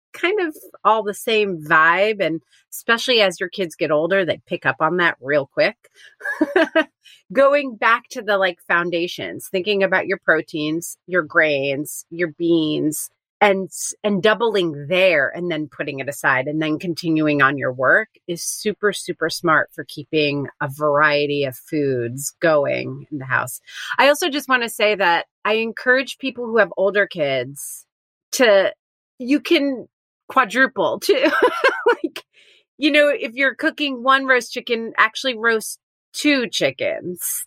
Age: 30-49